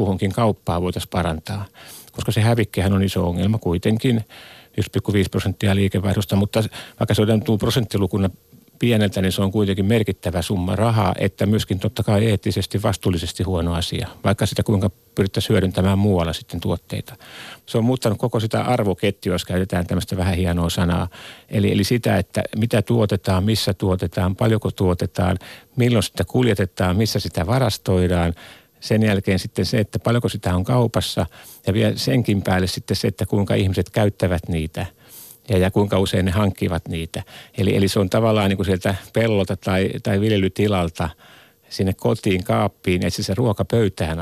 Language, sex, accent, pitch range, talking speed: Finnish, male, native, 95-110 Hz, 160 wpm